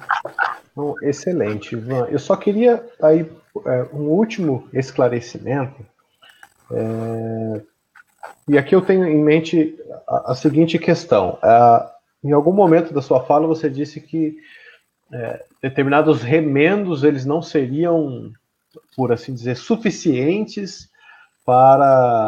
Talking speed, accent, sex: 115 wpm, Brazilian, male